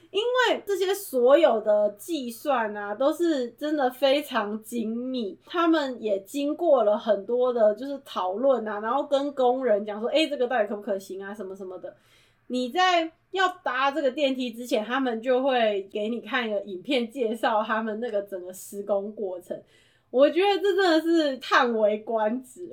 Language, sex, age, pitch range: Chinese, female, 20-39, 215-300 Hz